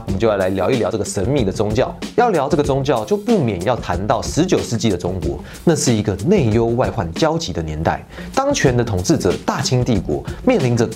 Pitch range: 105-175 Hz